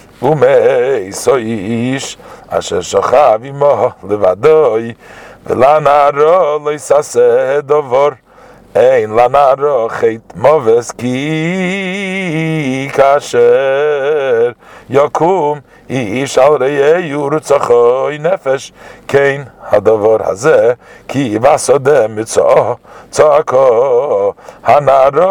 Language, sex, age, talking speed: English, male, 50-69, 75 wpm